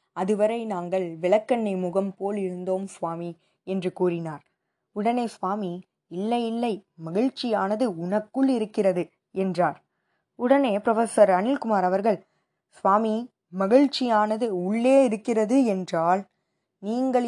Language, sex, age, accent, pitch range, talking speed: Tamil, female, 20-39, native, 185-240 Hz, 95 wpm